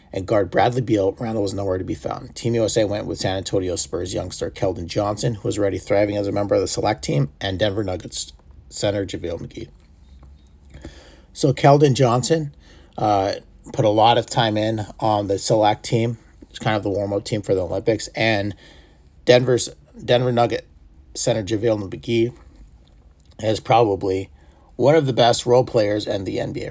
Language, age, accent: English, 40-59, American